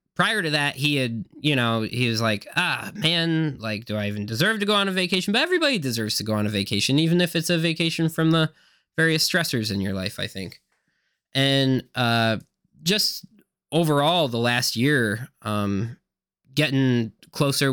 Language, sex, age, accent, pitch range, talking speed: English, male, 20-39, American, 115-160 Hz, 185 wpm